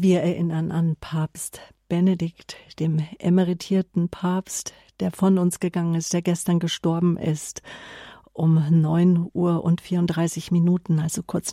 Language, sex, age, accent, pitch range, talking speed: German, female, 50-69, German, 165-185 Hz, 130 wpm